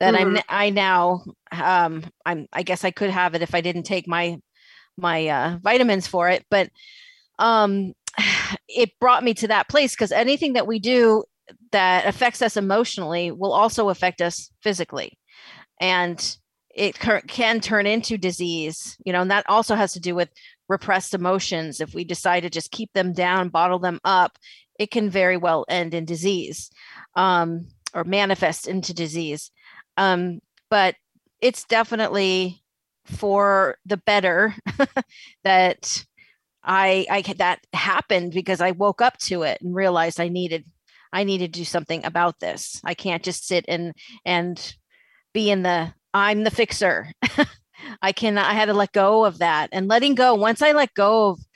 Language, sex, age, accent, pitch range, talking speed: English, female, 30-49, American, 175-220 Hz, 165 wpm